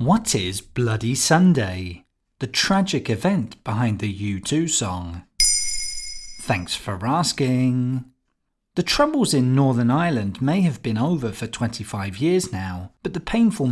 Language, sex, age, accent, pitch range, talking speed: English, male, 40-59, British, 110-170 Hz, 130 wpm